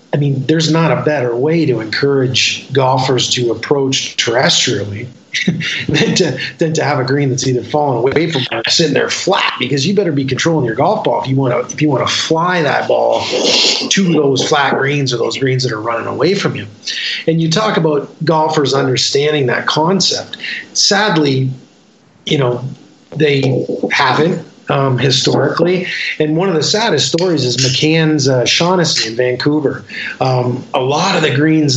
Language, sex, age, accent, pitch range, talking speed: English, male, 40-59, American, 130-160 Hz, 170 wpm